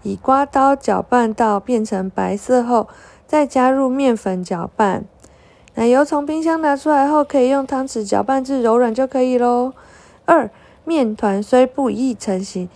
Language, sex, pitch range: Chinese, female, 210-270 Hz